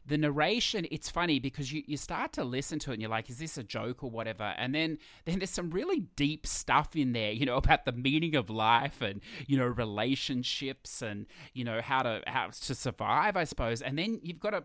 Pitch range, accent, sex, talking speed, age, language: 110-150 Hz, Australian, male, 235 wpm, 20-39, English